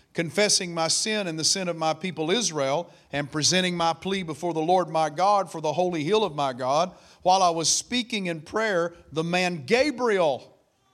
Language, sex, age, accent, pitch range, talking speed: English, male, 40-59, American, 155-200 Hz, 190 wpm